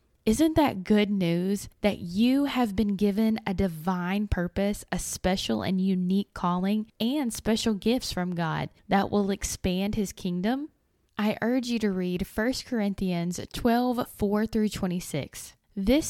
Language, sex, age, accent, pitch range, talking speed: English, female, 10-29, American, 180-220 Hz, 140 wpm